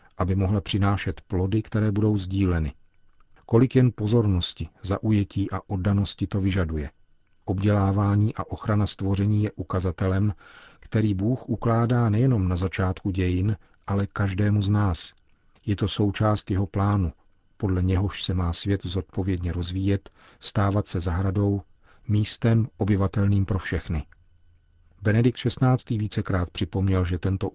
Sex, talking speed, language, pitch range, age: male, 125 wpm, Czech, 90-105 Hz, 40-59